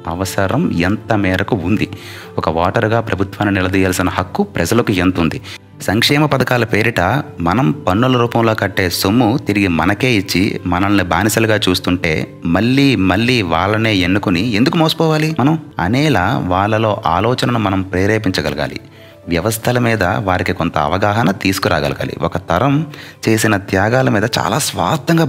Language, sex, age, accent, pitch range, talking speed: Telugu, male, 30-49, native, 90-115 Hz, 120 wpm